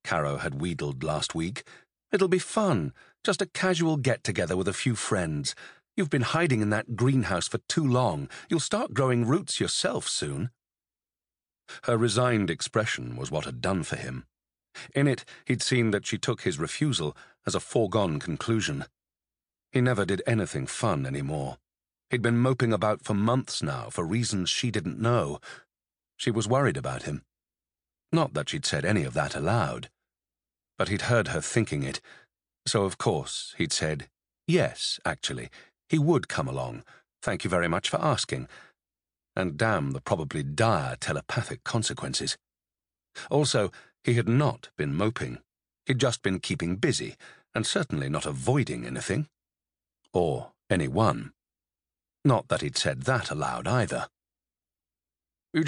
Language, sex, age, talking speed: English, male, 40-59, 150 wpm